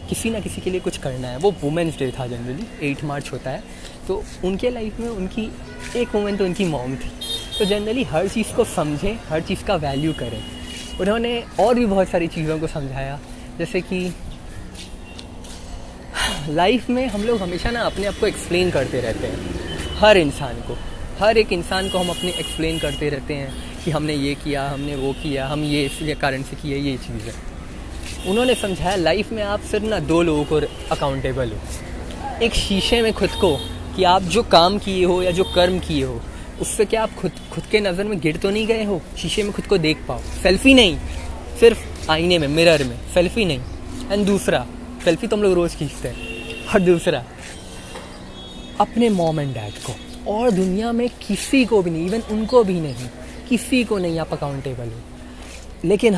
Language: Hindi